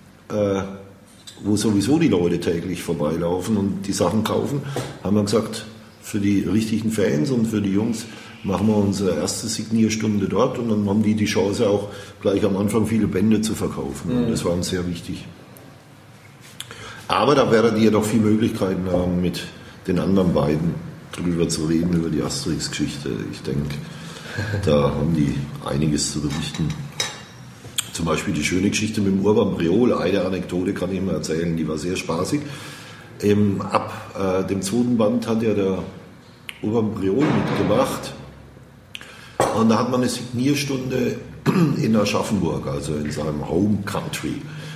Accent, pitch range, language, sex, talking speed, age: German, 90-110 Hz, German, male, 155 wpm, 50-69